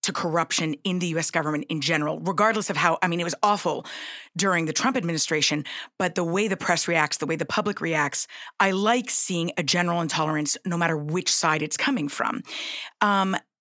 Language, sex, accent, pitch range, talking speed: English, female, American, 165-210 Hz, 195 wpm